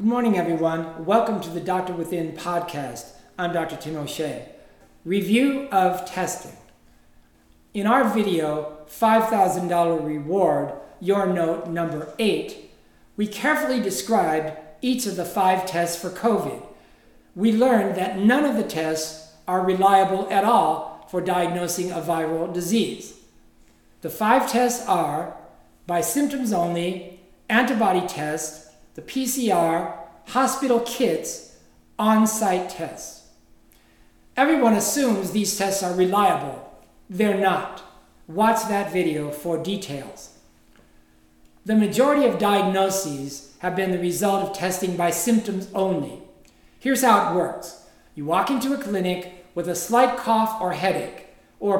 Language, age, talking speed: English, 60-79, 125 wpm